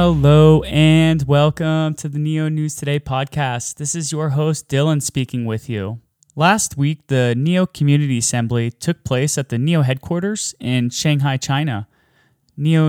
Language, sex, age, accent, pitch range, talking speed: English, male, 20-39, American, 130-155 Hz, 155 wpm